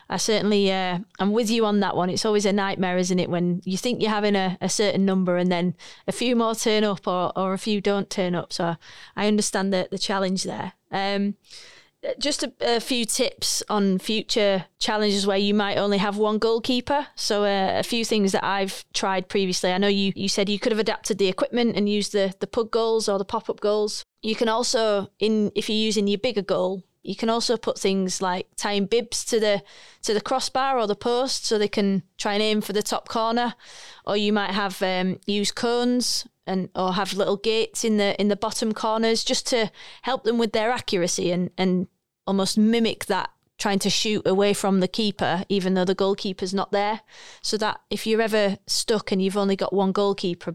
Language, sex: English, female